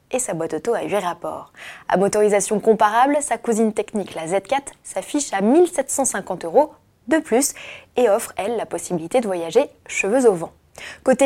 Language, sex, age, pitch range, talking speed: French, female, 20-39, 185-265 Hz, 170 wpm